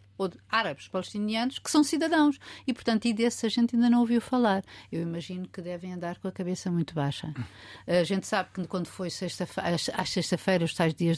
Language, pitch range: Portuguese, 170-215 Hz